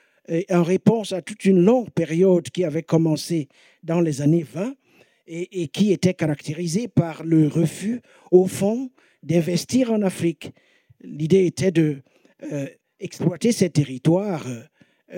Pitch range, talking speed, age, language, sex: 160-195 Hz, 135 wpm, 60-79, French, male